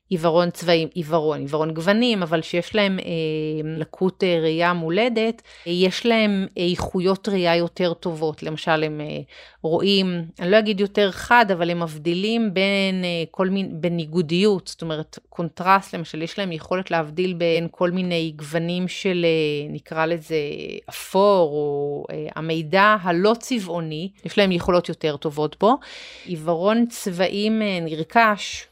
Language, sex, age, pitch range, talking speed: Hebrew, female, 30-49, 165-195 Hz, 140 wpm